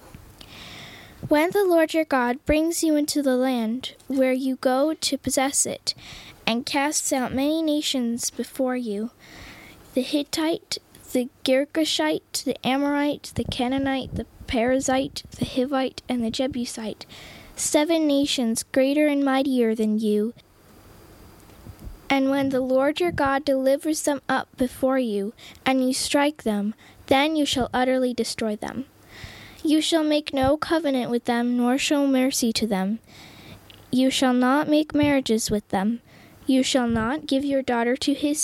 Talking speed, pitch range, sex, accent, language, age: 145 wpm, 235-285 Hz, female, American, English, 10-29